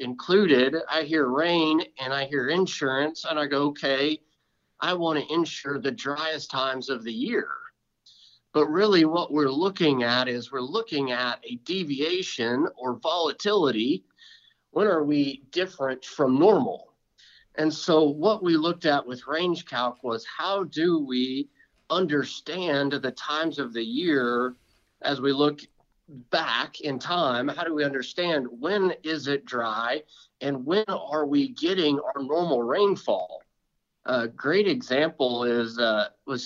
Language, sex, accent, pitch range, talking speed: English, male, American, 130-170 Hz, 145 wpm